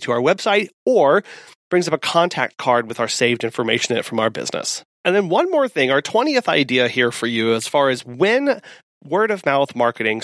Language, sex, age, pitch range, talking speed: English, male, 30-49, 135-205 Hz, 215 wpm